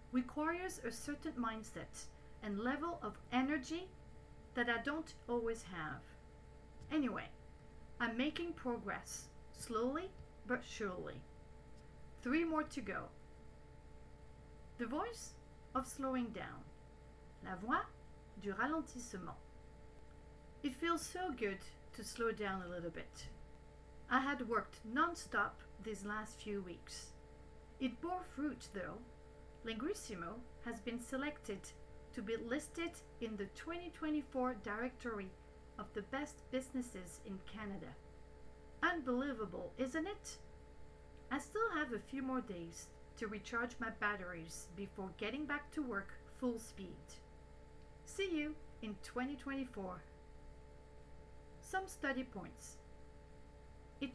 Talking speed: 110 wpm